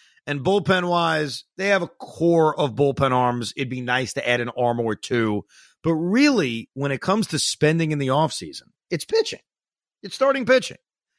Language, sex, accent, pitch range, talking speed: English, male, American, 130-200 Hz, 175 wpm